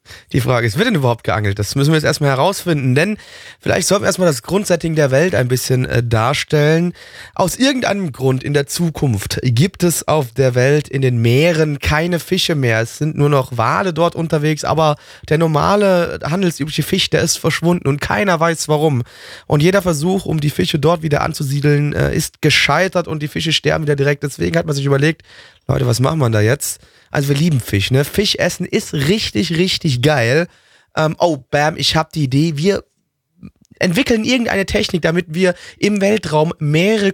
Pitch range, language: 135-175 Hz, German